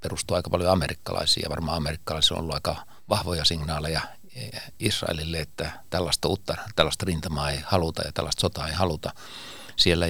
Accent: native